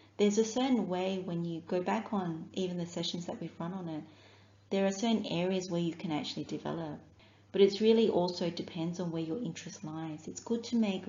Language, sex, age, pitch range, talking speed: English, female, 30-49, 160-200 Hz, 215 wpm